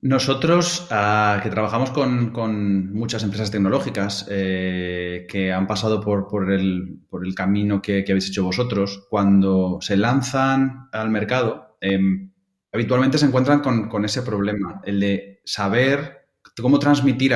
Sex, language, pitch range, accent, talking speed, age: male, Spanish, 100-130 Hz, Spanish, 145 wpm, 20-39